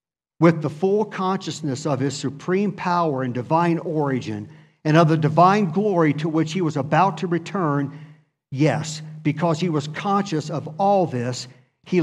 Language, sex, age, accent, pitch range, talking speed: English, male, 50-69, American, 145-180 Hz, 160 wpm